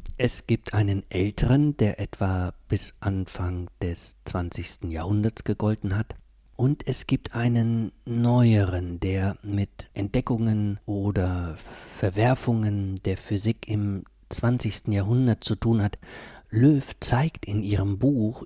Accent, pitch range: German, 95-115 Hz